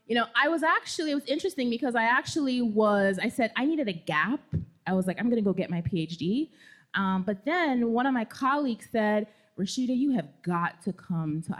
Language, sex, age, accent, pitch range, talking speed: English, female, 20-39, American, 185-240 Hz, 220 wpm